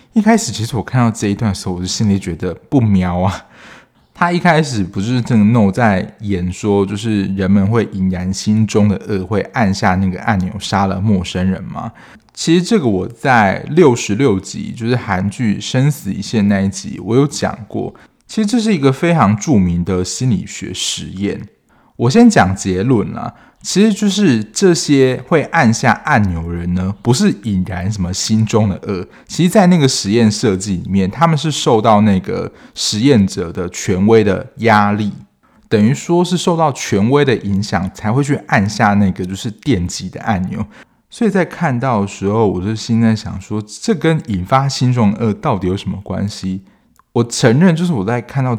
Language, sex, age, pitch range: Chinese, male, 20-39, 95-130 Hz